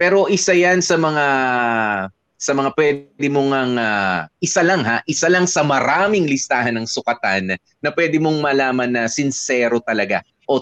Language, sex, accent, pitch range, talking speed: Filipino, male, native, 110-145 Hz, 160 wpm